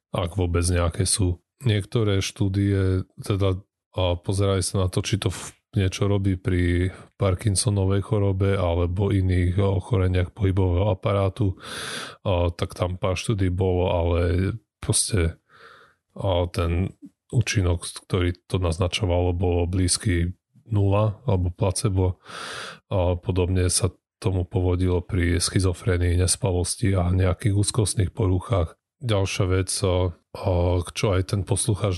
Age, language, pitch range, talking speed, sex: 30-49, Slovak, 90-100 Hz, 105 wpm, male